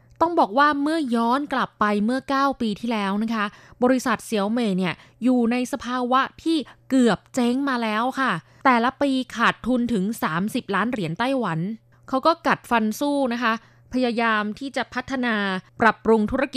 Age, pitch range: 20-39, 195-250 Hz